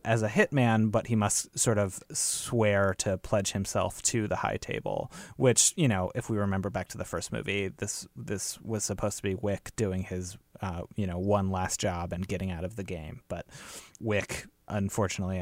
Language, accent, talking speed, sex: English, American, 200 wpm, male